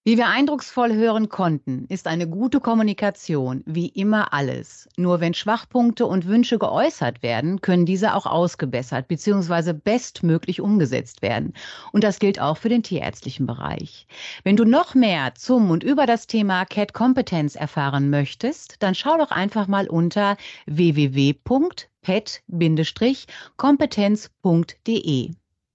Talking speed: 125 wpm